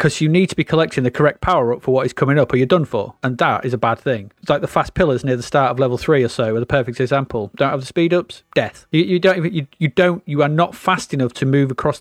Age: 30-49